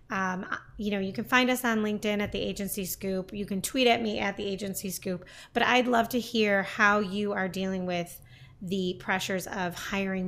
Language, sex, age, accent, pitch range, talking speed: English, female, 20-39, American, 190-220 Hz, 210 wpm